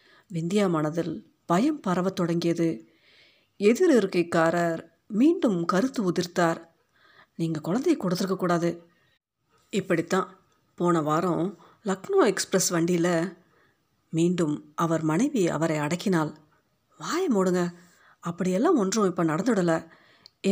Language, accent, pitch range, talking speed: Tamil, native, 170-205 Hz, 90 wpm